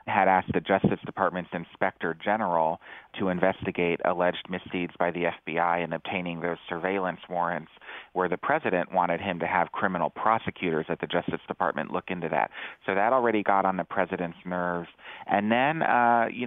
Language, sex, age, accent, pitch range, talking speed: English, male, 30-49, American, 90-100 Hz, 170 wpm